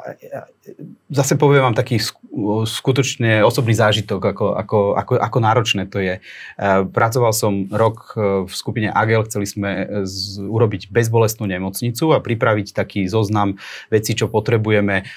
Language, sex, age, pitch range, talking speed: Slovak, male, 30-49, 100-115 Hz, 130 wpm